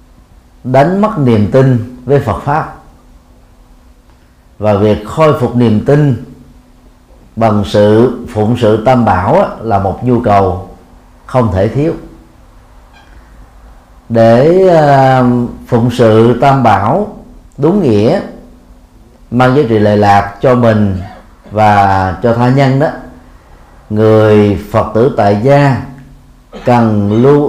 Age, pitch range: 40-59, 95-135 Hz